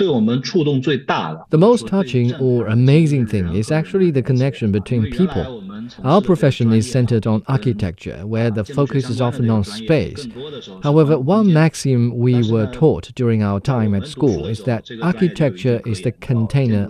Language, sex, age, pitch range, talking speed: English, male, 40-59, 110-140 Hz, 150 wpm